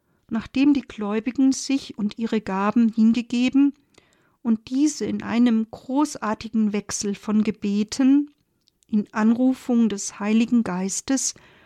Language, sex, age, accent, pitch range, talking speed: German, female, 50-69, German, 210-260 Hz, 110 wpm